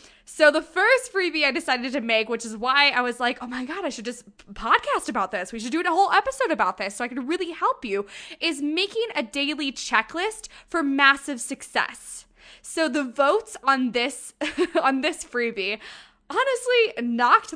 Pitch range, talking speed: 240-345 Hz, 190 wpm